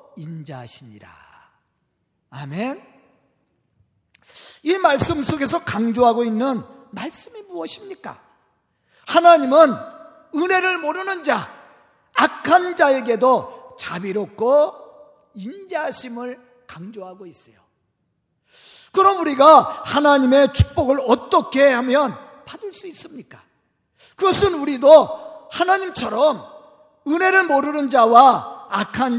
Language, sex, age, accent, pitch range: Korean, male, 40-59, native, 235-330 Hz